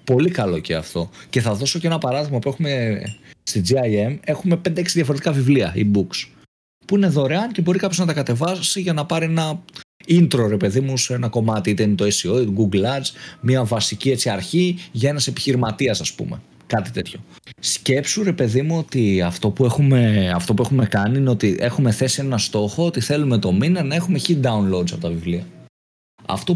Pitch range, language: 105-155 Hz, Greek